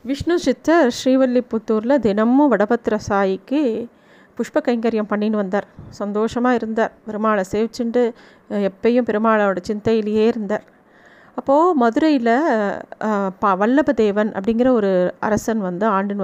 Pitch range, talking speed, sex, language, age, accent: 210-255 Hz, 100 wpm, female, Tamil, 30-49, native